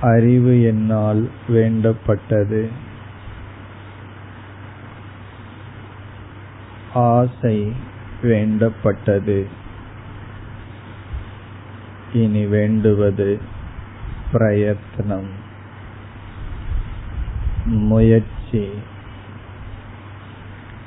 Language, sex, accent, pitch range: Tamil, male, native, 100-110 Hz